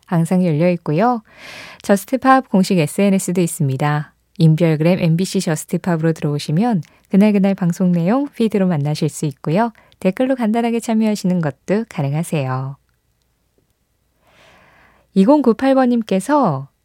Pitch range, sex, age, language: 160-230 Hz, female, 20-39, Korean